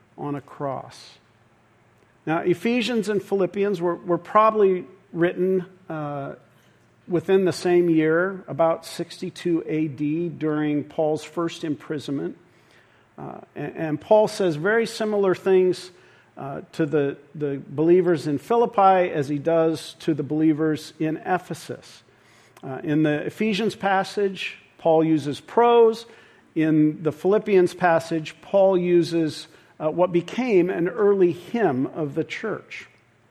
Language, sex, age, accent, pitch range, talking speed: English, male, 50-69, American, 150-185 Hz, 125 wpm